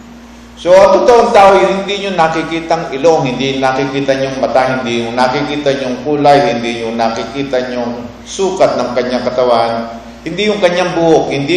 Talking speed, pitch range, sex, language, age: 165 wpm, 120-165 Hz, male, English, 50-69